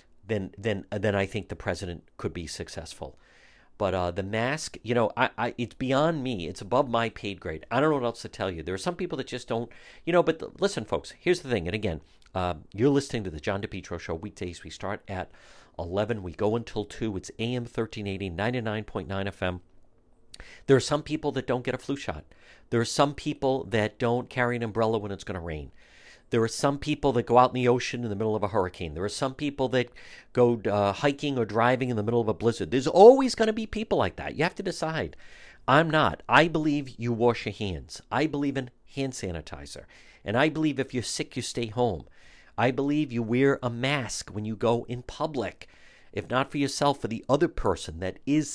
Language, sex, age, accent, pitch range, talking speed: English, male, 50-69, American, 100-135 Hz, 225 wpm